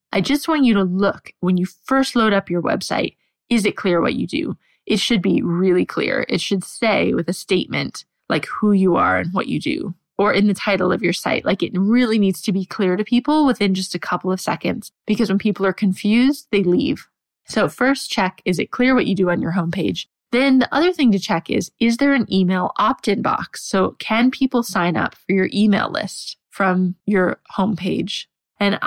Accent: American